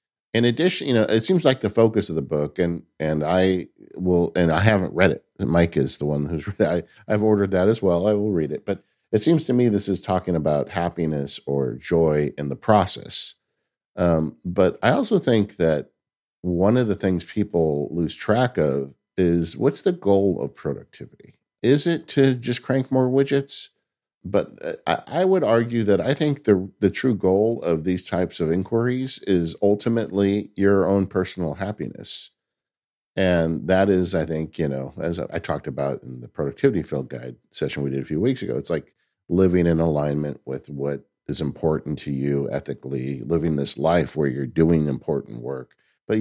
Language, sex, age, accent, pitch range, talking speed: English, male, 50-69, American, 75-105 Hz, 190 wpm